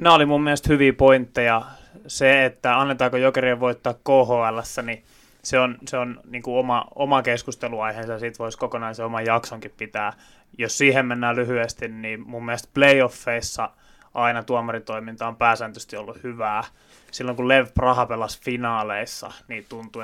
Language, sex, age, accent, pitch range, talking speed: Finnish, male, 20-39, native, 115-130 Hz, 155 wpm